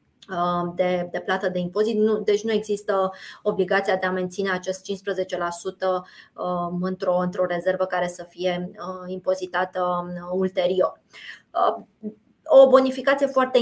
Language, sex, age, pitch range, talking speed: Romanian, female, 20-39, 190-220 Hz, 100 wpm